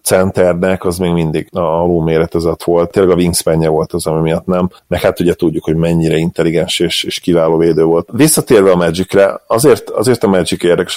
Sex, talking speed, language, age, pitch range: male, 195 wpm, Hungarian, 30-49, 85-100 Hz